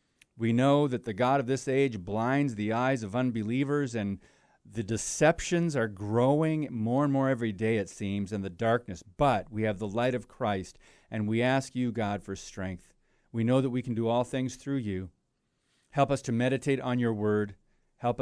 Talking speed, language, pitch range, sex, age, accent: 200 wpm, English, 110-140 Hz, male, 40-59, American